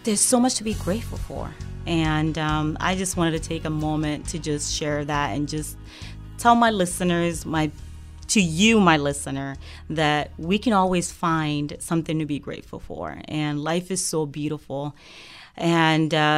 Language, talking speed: English, 170 wpm